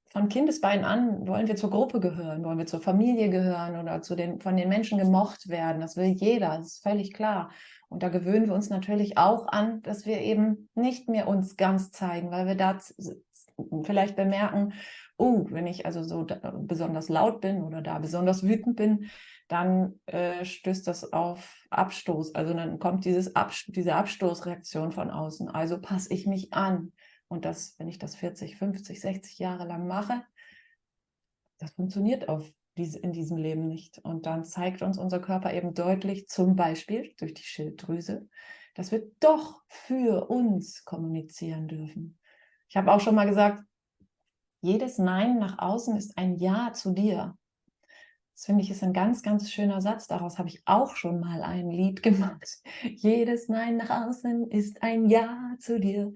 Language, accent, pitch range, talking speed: German, German, 175-210 Hz, 175 wpm